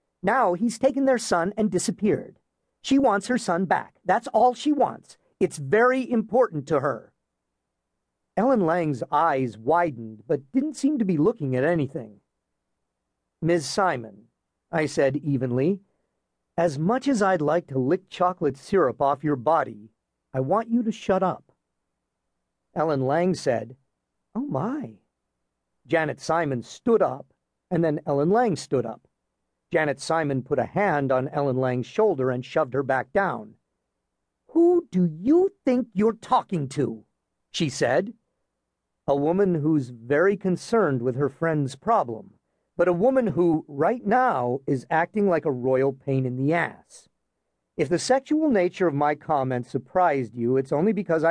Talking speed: 150 wpm